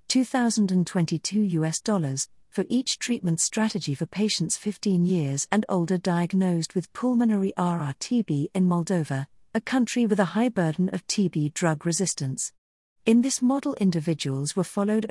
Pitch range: 160-215 Hz